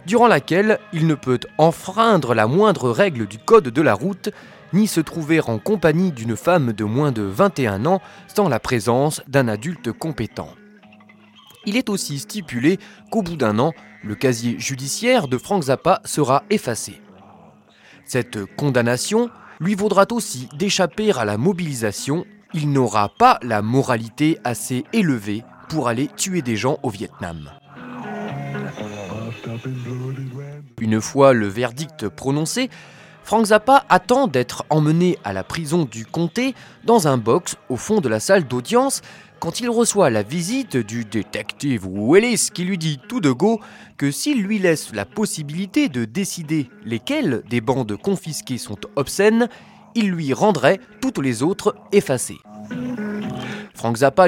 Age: 20-39